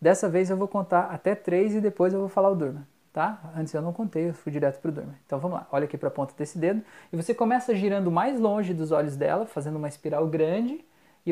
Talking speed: 260 wpm